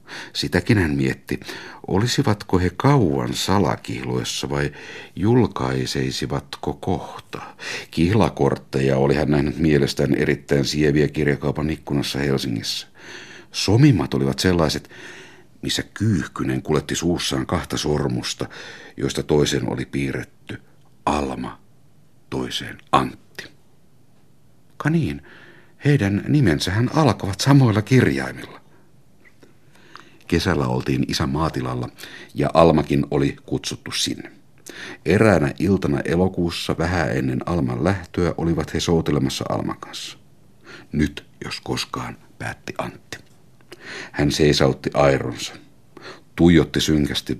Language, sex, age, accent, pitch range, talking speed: Finnish, male, 60-79, native, 70-95 Hz, 95 wpm